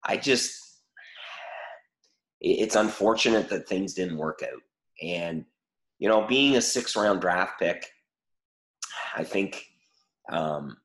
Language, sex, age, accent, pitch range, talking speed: English, male, 30-49, American, 85-110 Hz, 110 wpm